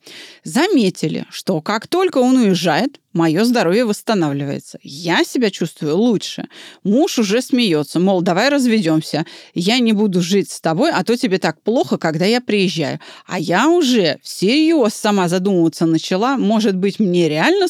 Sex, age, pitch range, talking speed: female, 30-49, 185-275 Hz, 150 wpm